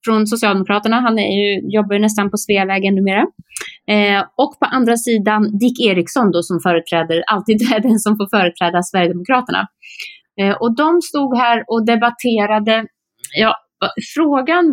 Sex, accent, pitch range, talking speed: female, native, 185-230 Hz, 145 wpm